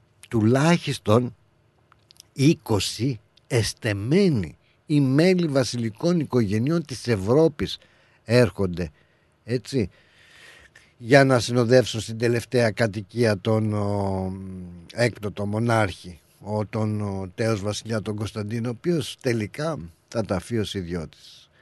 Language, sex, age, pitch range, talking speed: Greek, male, 50-69, 95-125 Hz, 90 wpm